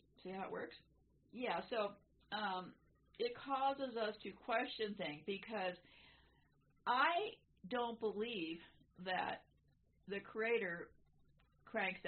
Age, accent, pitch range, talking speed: 50-69, American, 185-260 Hz, 105 wpm